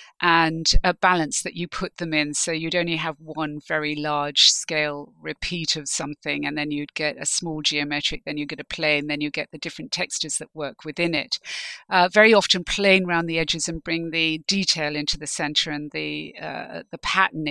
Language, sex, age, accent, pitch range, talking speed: English, female, 50-69, British, 155-215 Hz, 205 wpm